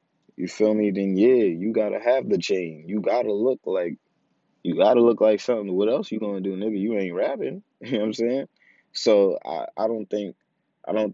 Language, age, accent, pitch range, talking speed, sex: English, 20-39, American, 90-100 Hz, 215 wpm, male